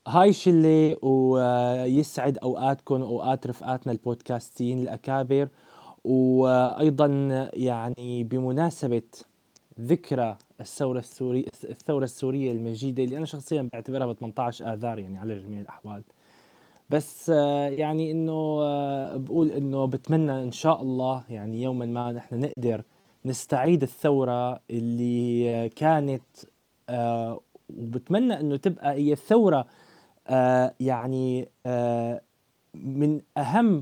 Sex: male